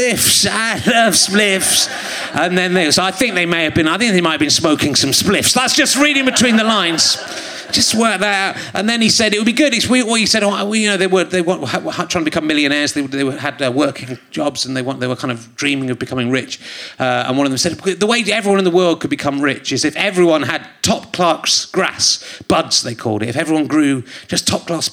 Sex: male